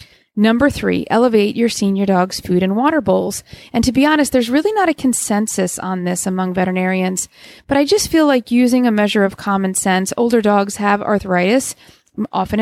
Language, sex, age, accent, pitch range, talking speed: English, female, 30-49, American, 195-250 Hz, 185 wpm